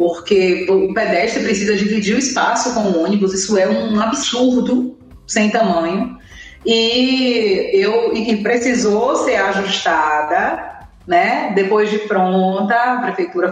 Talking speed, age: 125 wpm, 30-49